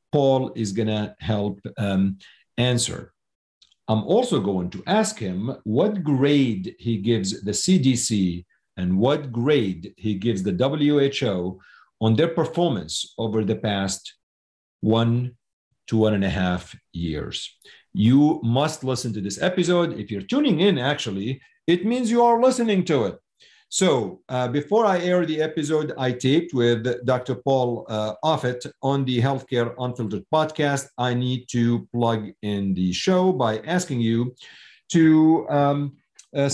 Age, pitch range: 50-69, 110-150 Hz